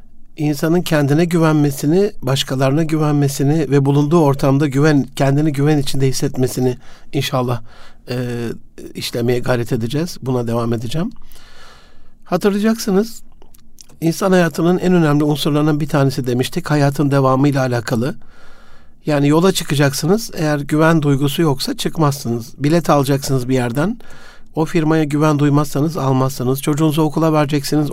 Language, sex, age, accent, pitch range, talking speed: Turkish, male, 60-79, native, 135-165 Hz, 115 wpm